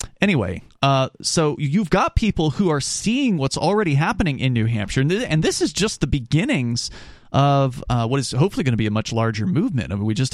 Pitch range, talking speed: 120-150 Hz, 225 wpm